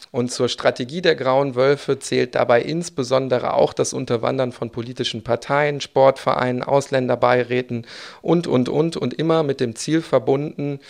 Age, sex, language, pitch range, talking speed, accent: 40-59, male, German, 120-140 Hz, 145 wpm, German